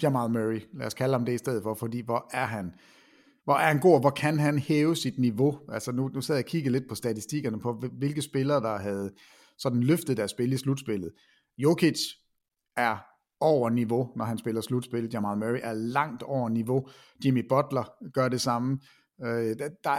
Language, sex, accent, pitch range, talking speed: Danish, male, native, 120-150 Hz, 190 wpm